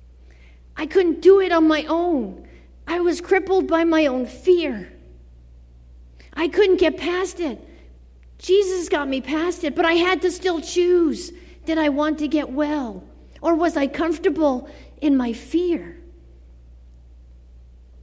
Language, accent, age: English, American, 50-69